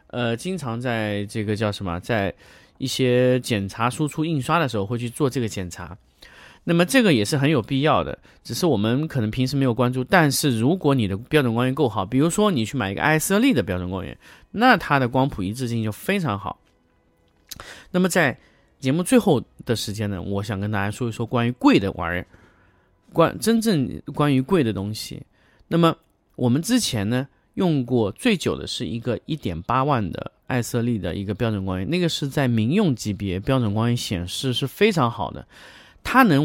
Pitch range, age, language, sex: 105-150 Hz, 30-49, Chinese, male